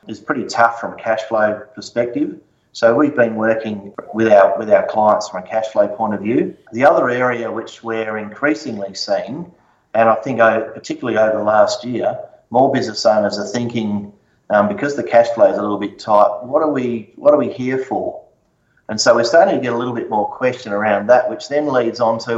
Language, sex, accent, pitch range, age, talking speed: English, male, Australian, 110-145 Hz, 30-49, 215 wpm